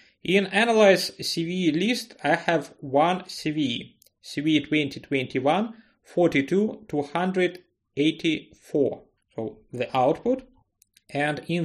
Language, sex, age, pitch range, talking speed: English, male, 30-49, 135-185 Hz, 75 wpm